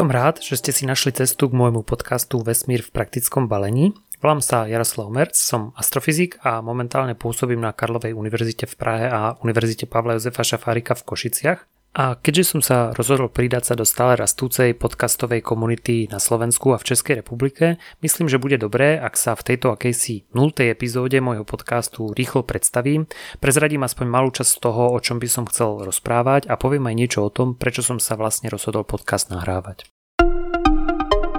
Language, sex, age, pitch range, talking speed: Slovak, male, 30-49, 115-135 Hz, 180 wpm